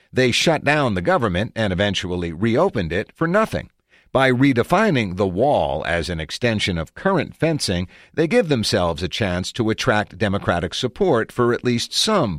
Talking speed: 165 wpm